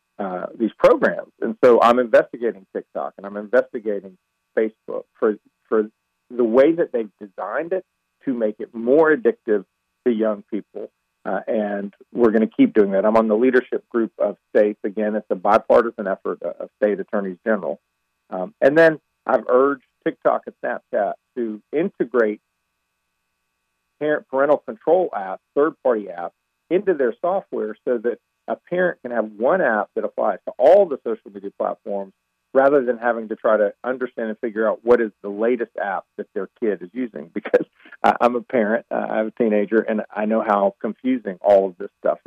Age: 50-69